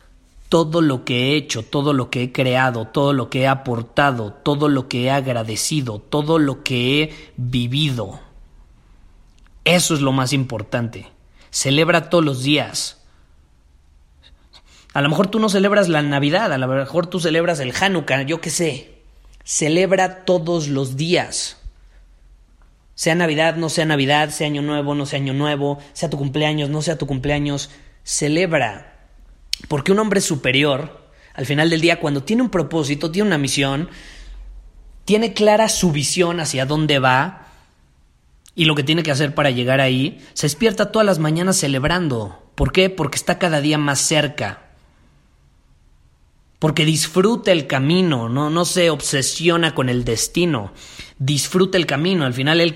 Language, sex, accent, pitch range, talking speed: Spanish, male, Mexican, 125-165 Hz, 155 wpm